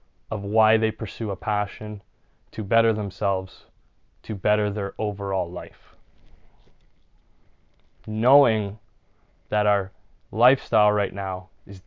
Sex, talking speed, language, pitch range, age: male, 105 wpm, English, 95-110 Hz, 20-39